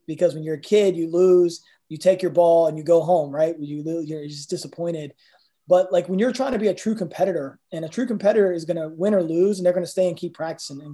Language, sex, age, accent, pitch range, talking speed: English, male, 20-39, American, 155-180 Hz, 265 wpm